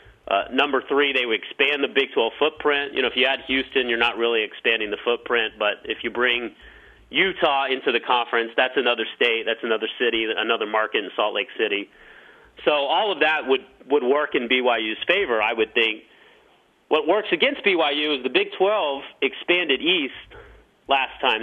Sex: male